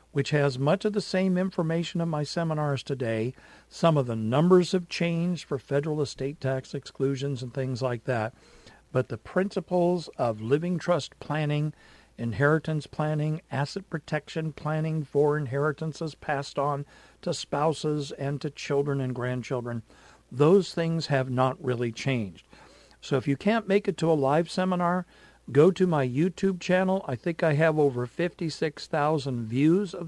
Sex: male